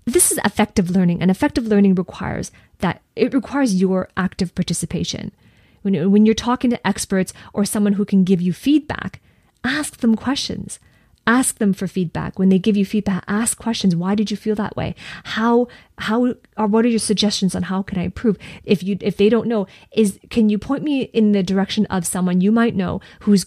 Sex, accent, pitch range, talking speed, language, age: female, American, 180-215 Hz, 200 wpm, English, 30-49